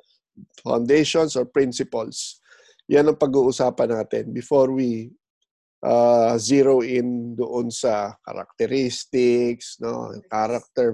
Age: 20-39